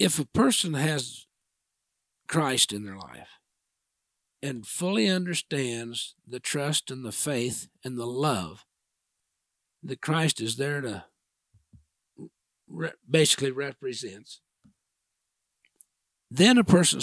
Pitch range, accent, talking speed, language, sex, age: 120-165 Hz, American, 100 wpm, English, male, 60-79